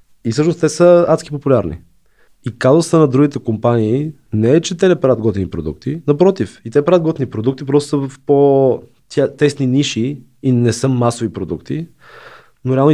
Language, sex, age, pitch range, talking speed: Bulgarian, male, 20-39, 120-145 Hz, 170 wpm